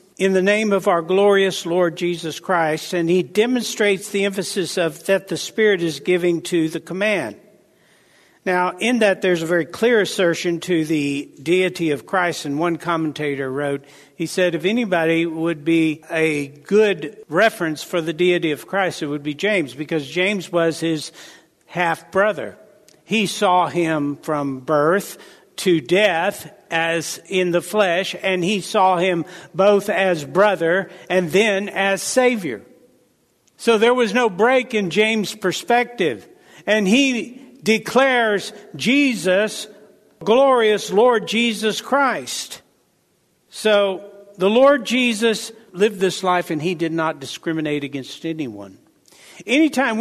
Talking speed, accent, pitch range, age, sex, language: 140 wpm, American, 165-210 Hz, 60-79, male, English